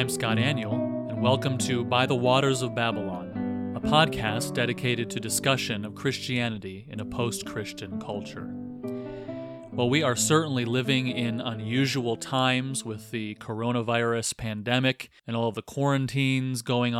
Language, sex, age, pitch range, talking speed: English, male, 30-49, 115-130 Hz, 140 wpm